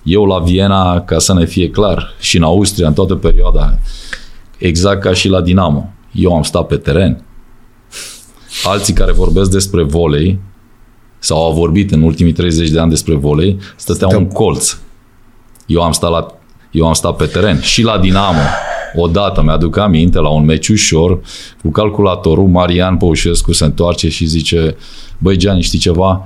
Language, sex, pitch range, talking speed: Romanian, male, 80-95 Hz, 165 wpm